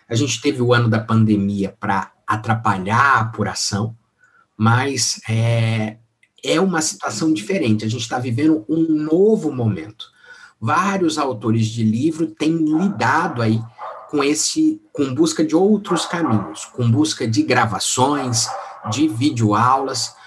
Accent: Brazilian